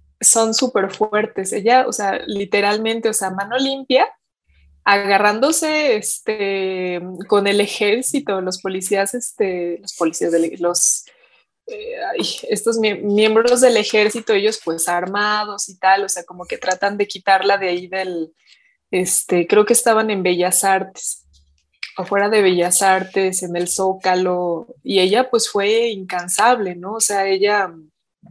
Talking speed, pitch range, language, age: 140 wpm, 185-215 Hz, Spanish, 20-39